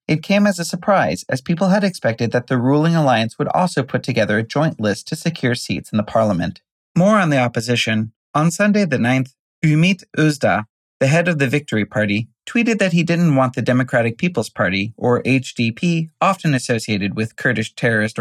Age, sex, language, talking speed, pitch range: 30-49, male, English, 190 wpm, 120-170 Hz